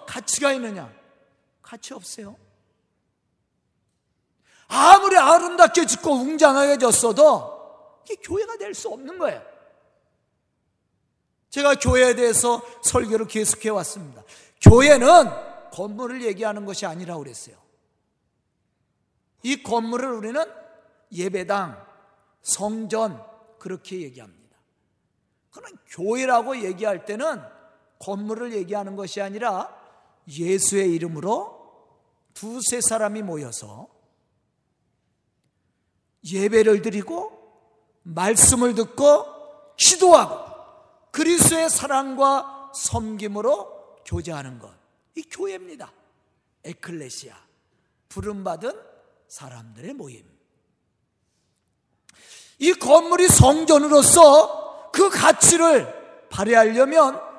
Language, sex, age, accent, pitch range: Korean, male, 40-59, native, 210-315 Hz